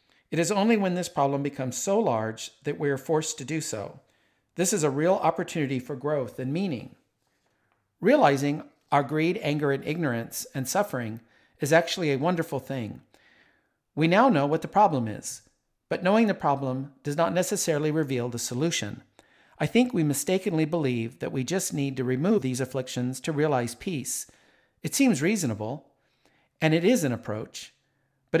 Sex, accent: male, American